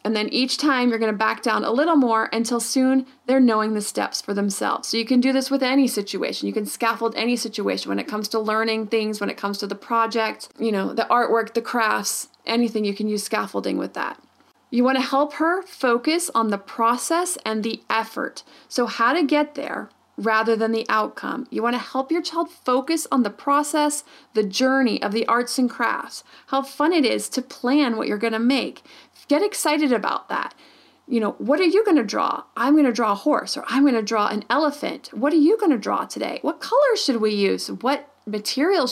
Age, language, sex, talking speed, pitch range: 30-49, English, female, 215 wpm, 220-290 Hz